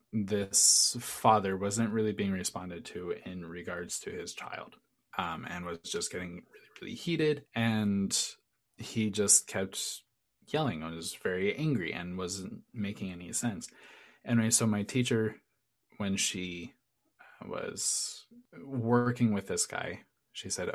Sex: male